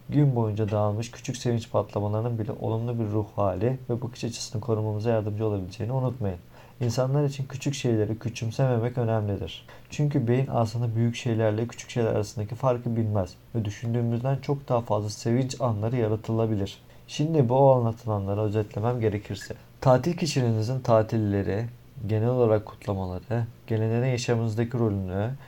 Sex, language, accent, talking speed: male, Turkish, native, 130 wpm